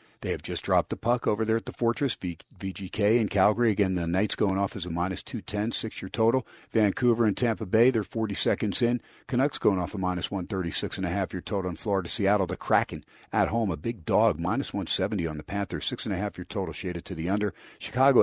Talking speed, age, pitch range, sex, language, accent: 205 wpm, 50-69, 95-110 Hz, male, English, American